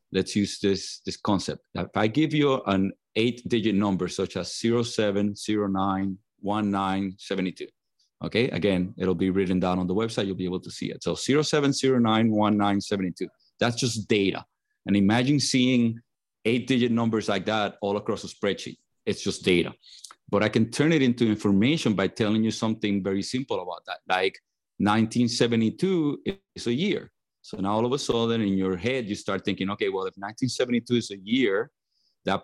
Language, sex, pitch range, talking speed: English, male, 100-120 Hz, 170 wpm